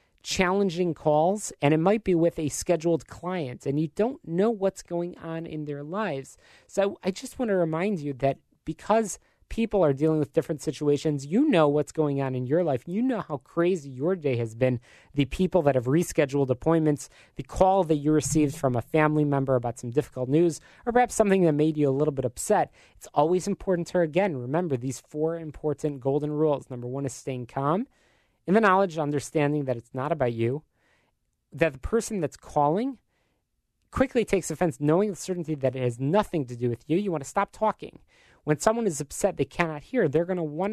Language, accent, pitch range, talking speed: English, American, 145-185 Hz, 205 wpm